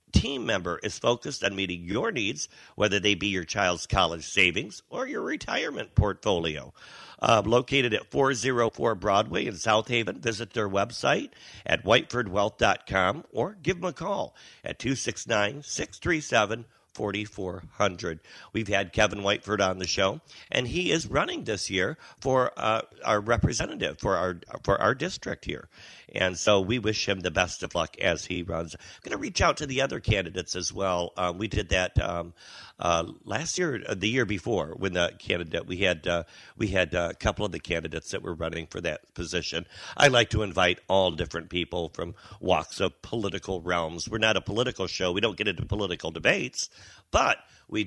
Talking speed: 180 wpm